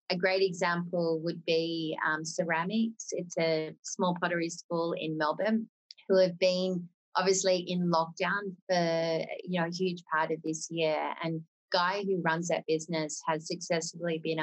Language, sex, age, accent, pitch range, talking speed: English, female, 30-49, Australian, 160-185 Hz, 160 wpm